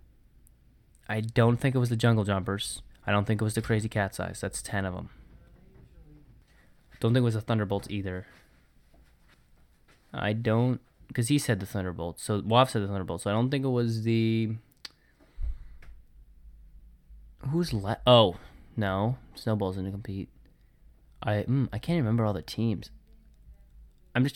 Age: 20-39